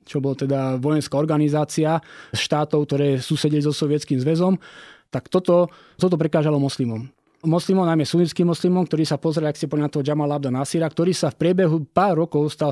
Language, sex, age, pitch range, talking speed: Slovak, male, 20-39, 140-170 Hz, 165 wpm